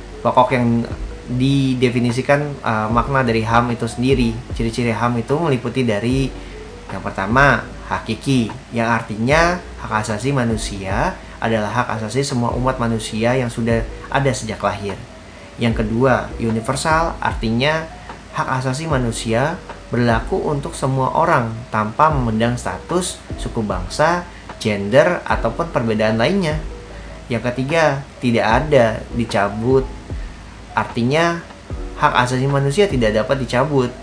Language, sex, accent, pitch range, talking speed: Indonesian, male, native, 110-135 Hz, 115 wpm